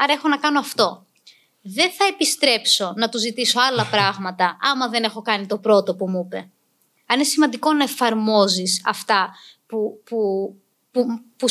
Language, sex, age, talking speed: Greek, female, 20-39, 165 wpm